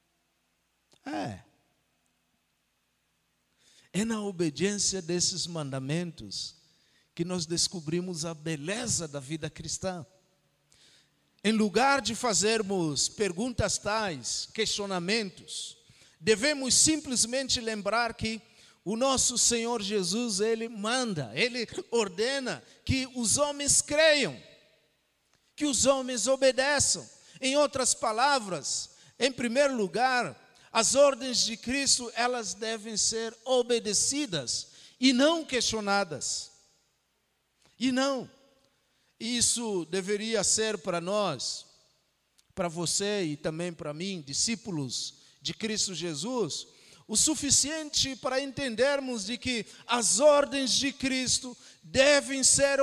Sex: male